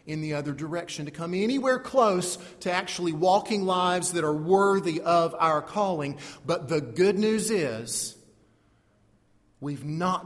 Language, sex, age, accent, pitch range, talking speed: English, male, 40-59, American, 130-190 Hz, 145 wpm